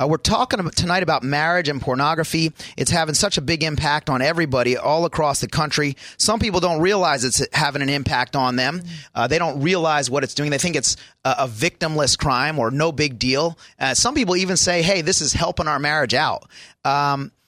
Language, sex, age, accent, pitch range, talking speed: English, male, 30-49, American, 130-160 Hz, 210 wpm